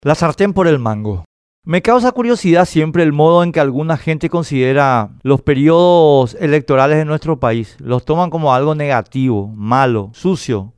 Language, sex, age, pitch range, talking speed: Spanish, male, 40-59, 120-165 Hz, 160 wpm